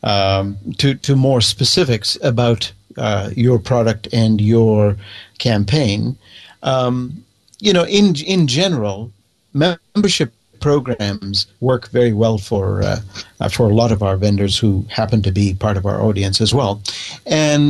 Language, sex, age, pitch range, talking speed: English, male, 50-69, 105-140 Hz, 140 wpm